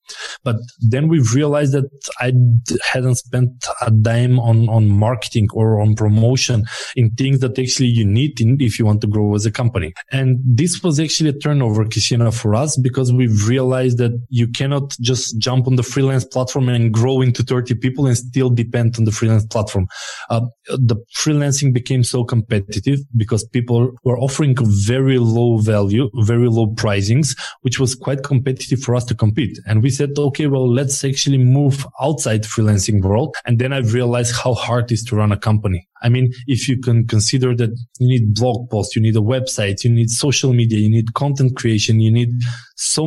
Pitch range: 115-130 Hz